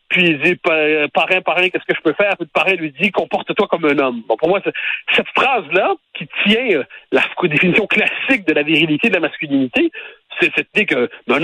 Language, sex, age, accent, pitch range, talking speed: French, male, 60-79, French, 160-245 Hz, 225 wpm